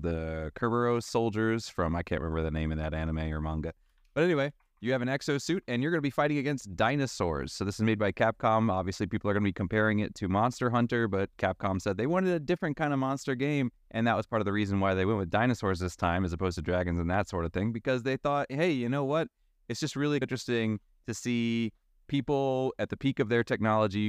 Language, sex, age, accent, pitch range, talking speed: English, male, 20-39, American, 95-120 Hz, 245 wpm